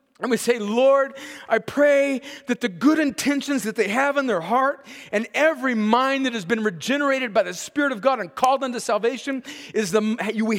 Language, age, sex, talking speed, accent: English, 40-59, male, 200 wpm, American